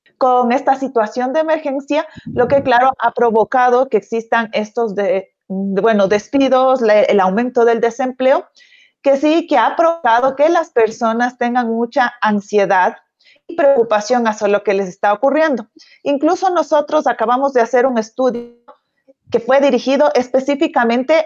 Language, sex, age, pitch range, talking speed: Spanish, female, 30-49, 225-280 Hz, 145 wpm